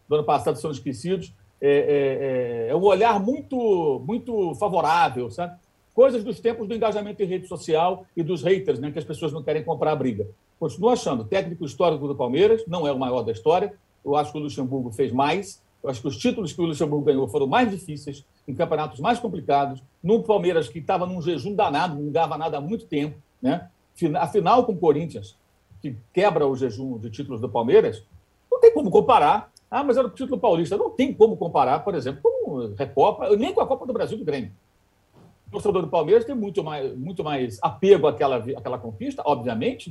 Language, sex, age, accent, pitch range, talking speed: Portuguese, male, 60-79, Brazilian, 135-215 Hz, 205 wpm